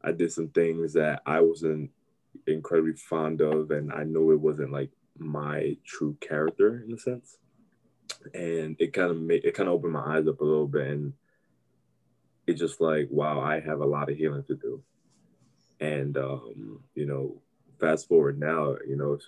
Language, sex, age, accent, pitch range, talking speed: English, male, 20-39, American, 70-80 Hz, 185 wpm